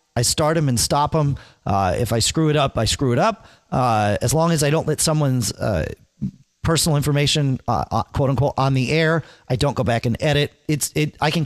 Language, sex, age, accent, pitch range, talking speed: English, male, 40-59, American, 110-155 Hz, 230 wpm